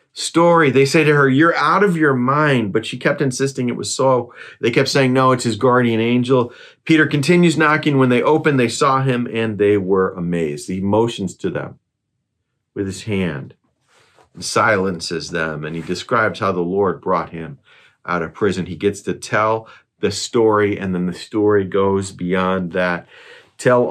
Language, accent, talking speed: English, American, 185 wpm